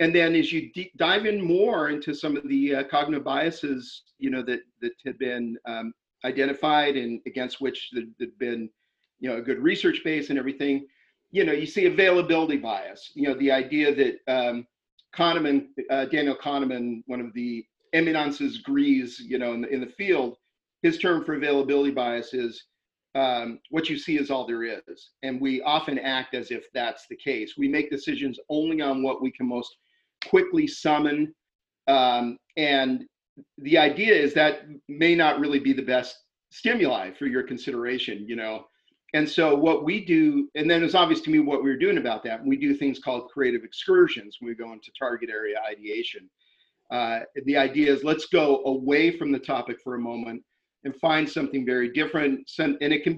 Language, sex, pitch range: English, male, 130-165 Hz